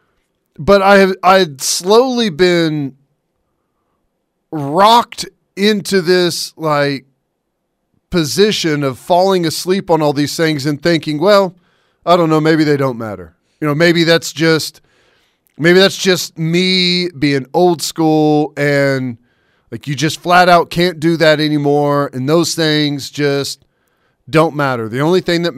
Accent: American